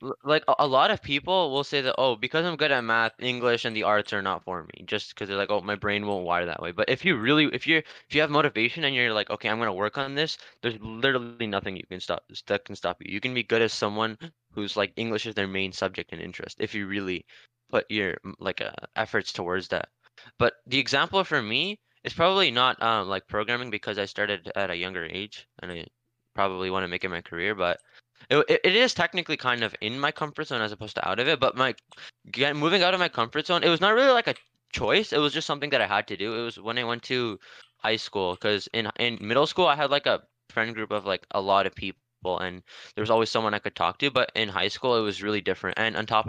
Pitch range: 105-140 Hz